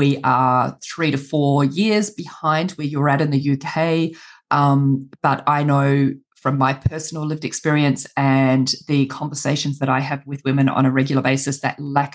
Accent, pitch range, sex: Australian, 135-155 Hz, female